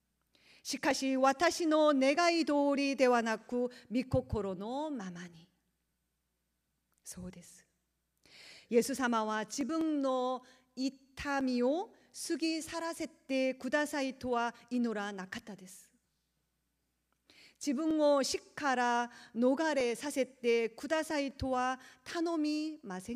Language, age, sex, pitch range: Japanese, 40-59, female, 220-305 Hz